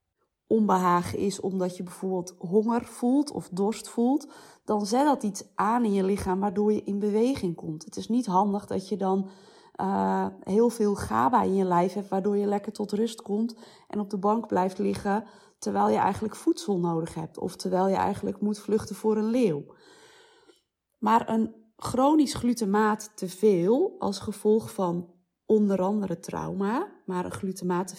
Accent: Dutch